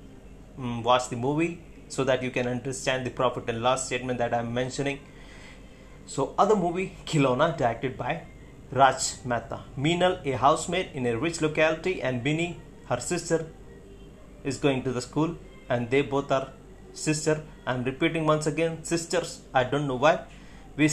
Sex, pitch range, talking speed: male, 125-160 Hz, 165 wpm